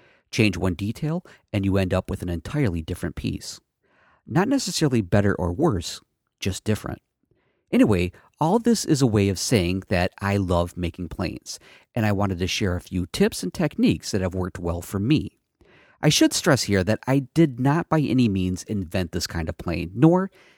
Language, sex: English, male